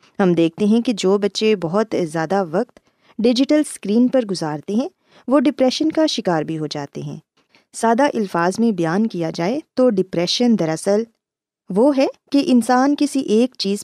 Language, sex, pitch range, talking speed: Urdu, female, 180-250 Hz, 165 wpm